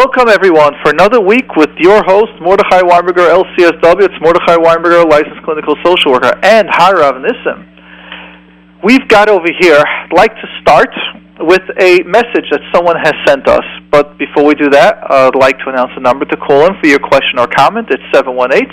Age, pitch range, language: 40-59, 140-205 Hz, English